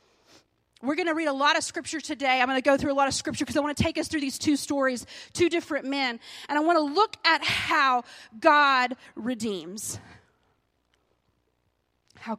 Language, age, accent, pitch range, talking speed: English, 30-49, American, 240-315 Hz, 200 wpm